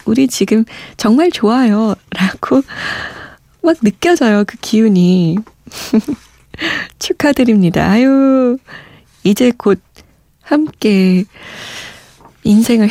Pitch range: 190-260 Hz